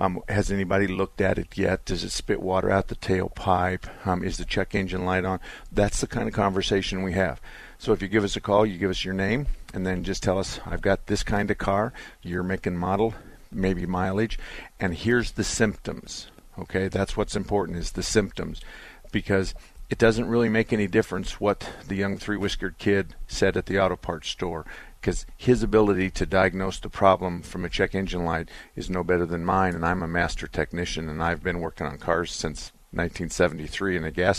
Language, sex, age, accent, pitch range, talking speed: English, male, 50-69, American, 90-100 Hz, 205 wpm